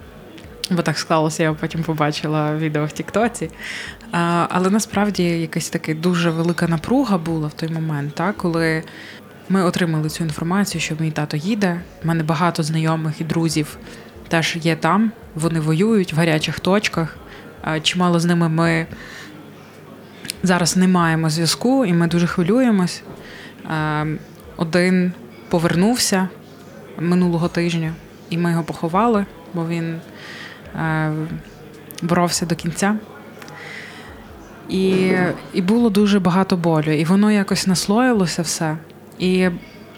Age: 20-39